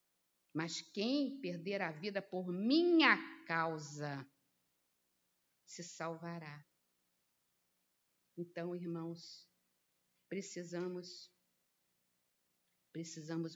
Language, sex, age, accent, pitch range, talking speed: Portuguese, female, 50-69, Brazilian, 150-195 Hz, 60 wpm